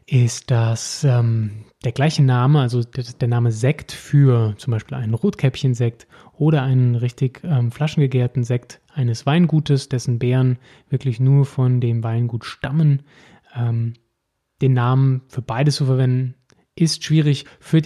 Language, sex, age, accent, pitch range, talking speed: German, male, 20-39, German, 120-140 Hz, 140 wpm